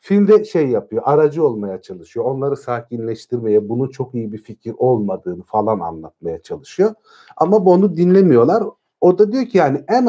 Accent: native